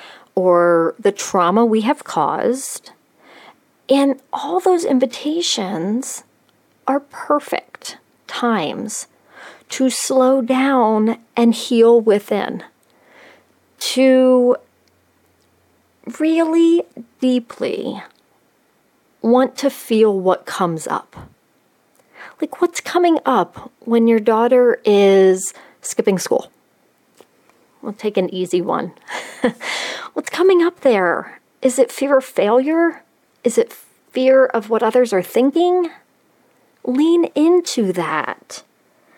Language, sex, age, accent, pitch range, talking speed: English, female, 40-59, American, 210-295 Hz, 95 wpm